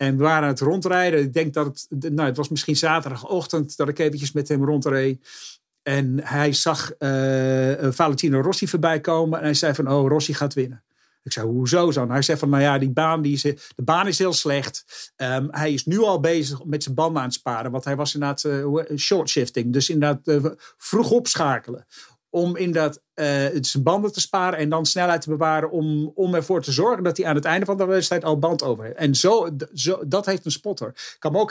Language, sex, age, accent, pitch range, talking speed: English, male, 50-69, Dutch, 140-165 Hz, 230 wpm